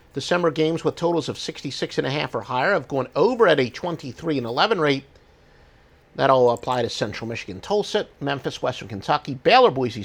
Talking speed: 190 wpm